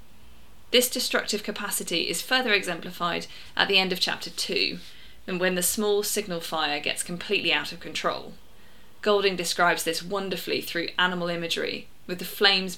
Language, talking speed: English, 155 wpm